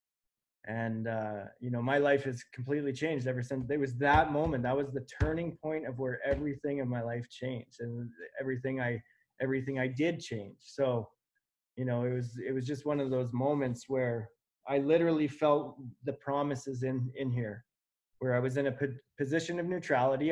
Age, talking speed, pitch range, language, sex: 20-39, 185 wpm, 125-155 Hz, English, male